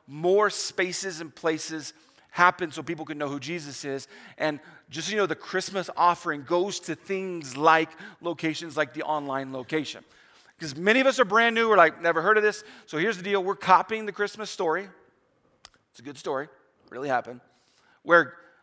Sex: male